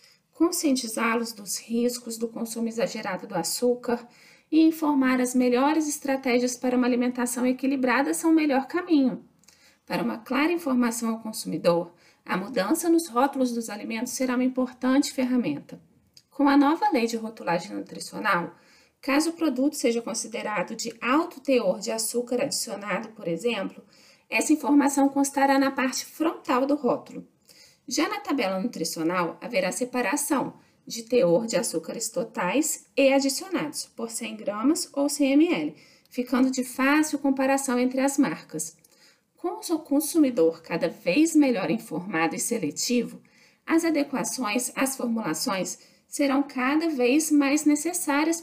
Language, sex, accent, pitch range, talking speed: Portuguese, female, Brazilian, 235-285 Hz, 135 wpm